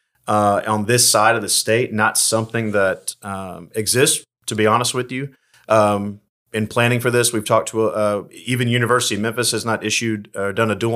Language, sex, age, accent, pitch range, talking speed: English, male, 30-49, American, 105-120 Hz, 205 wpm